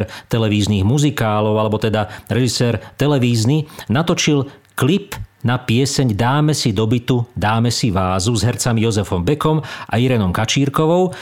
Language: Slovak